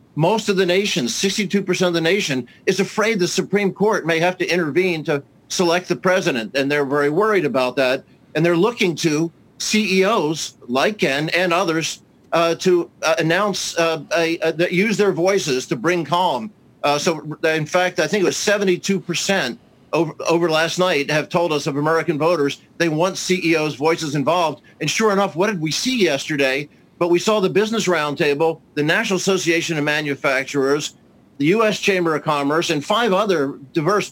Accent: American